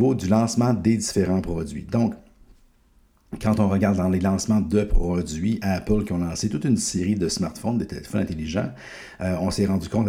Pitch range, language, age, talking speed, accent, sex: 90-105 Hz, French, 60-79, 180 wpm, Canadian, male